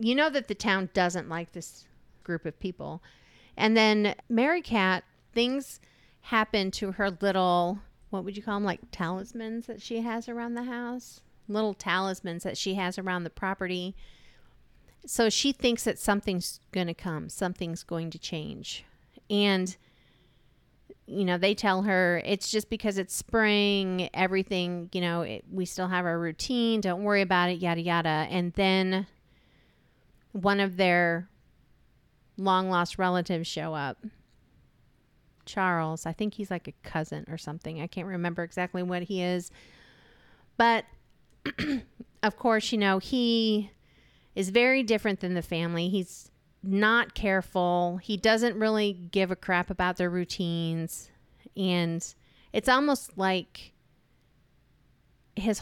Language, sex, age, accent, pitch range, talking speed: English, female, 40-59, American, 175-215 Hz, 140 wpm